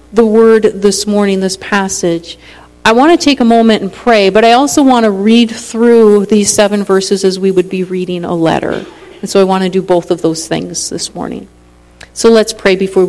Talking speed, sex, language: 215 wpm, female, English